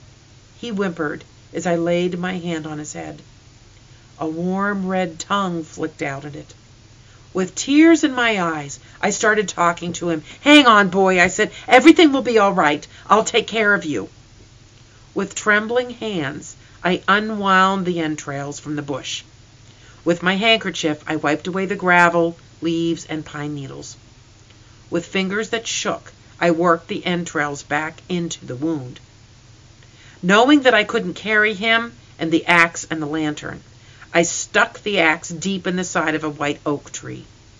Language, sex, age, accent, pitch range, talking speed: English, female, 50-69, American, 120-185 Hz, 165 wpm